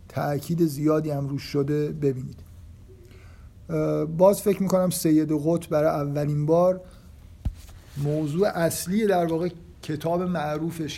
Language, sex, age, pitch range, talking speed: Persian, male, 50-69, 125-165 Hz, 105 wpm